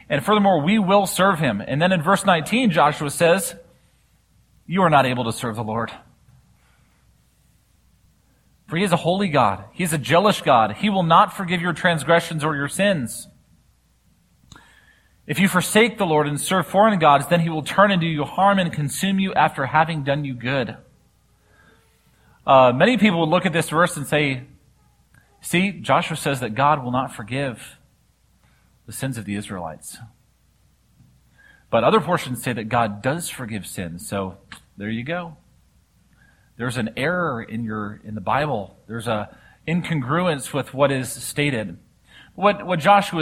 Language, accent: English, American